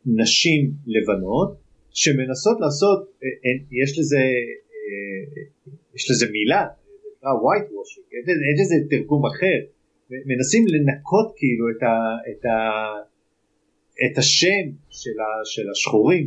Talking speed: 115 wpm